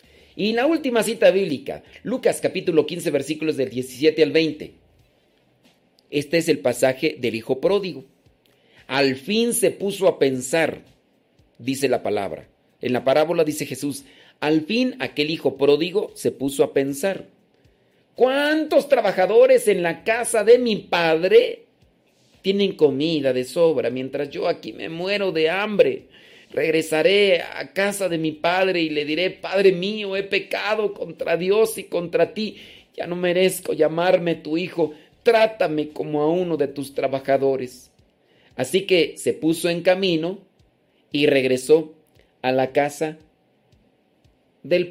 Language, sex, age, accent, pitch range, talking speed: Spanish, male, 50-69, Mexican, 135-190 Hz, 140 wpm